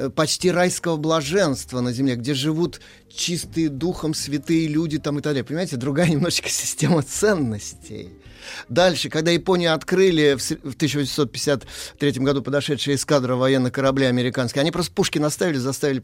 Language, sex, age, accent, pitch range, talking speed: Russian, male, 30-49, native, 115-155 Hz, 140 wpm